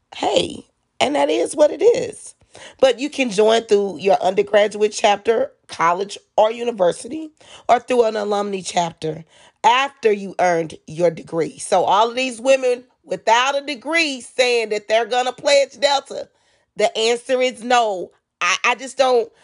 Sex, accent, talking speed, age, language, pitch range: female, American, 155 wpm, 40-59, English, 175-245 Hz